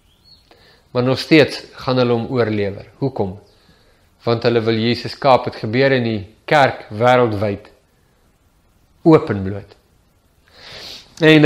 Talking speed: 110 wpm